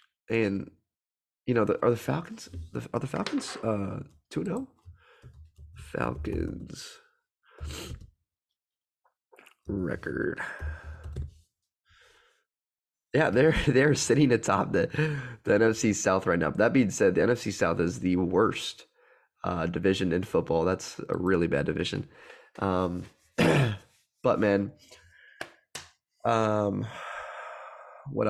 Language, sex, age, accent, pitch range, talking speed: English, male, 20-39, American, 90-110 Hz, 105 wpm